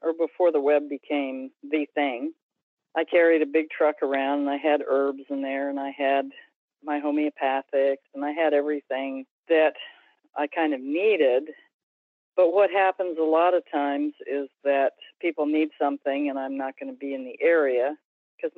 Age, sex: 50-69, female